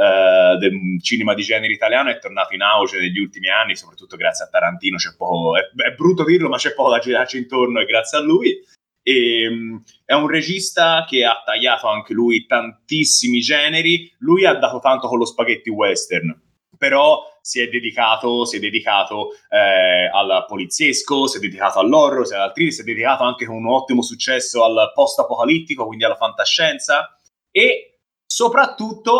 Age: 30-49